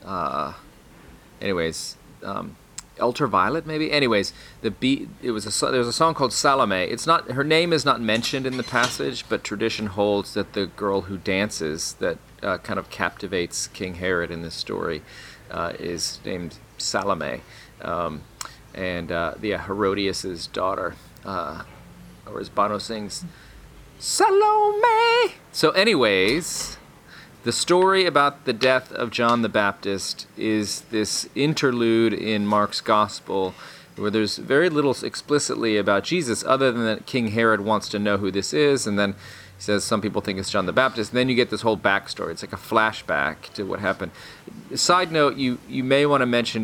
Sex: male